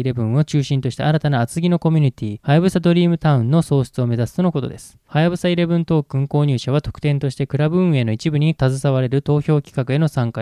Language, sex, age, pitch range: Japanese, male, 20-39, 125-160 Hz